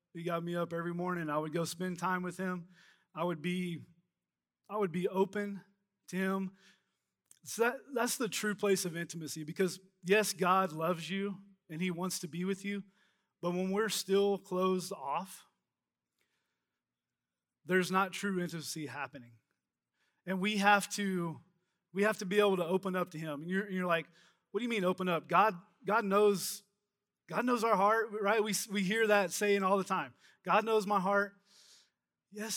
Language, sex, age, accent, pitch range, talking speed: English, male, 20-39, American, 170-200 Hz, 180 wpm